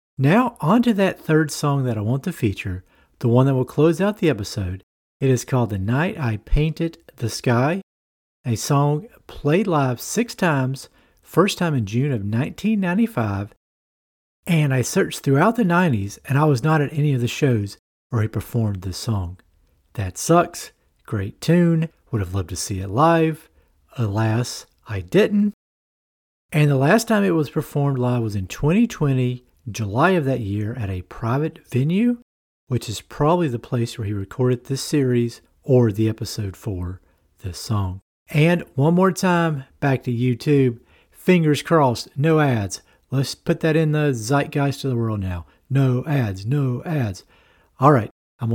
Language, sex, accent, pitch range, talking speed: English, male, American, 105-155 Hz, 170 wpm